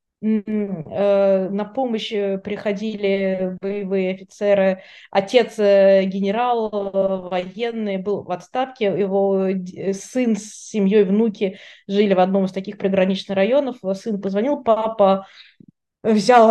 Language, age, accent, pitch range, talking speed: Russian, 20-39, native, 195-230 Hz, 100 wpm